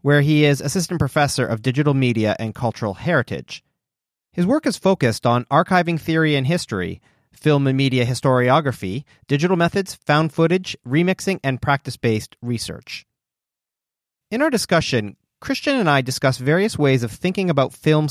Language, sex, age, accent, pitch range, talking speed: English, male, 40-59, American, 120-170 Hz, 150 wpm